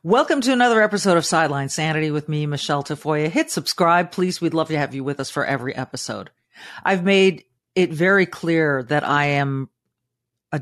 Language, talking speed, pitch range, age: English, 185 wpm, 135-180 Hz, 40-59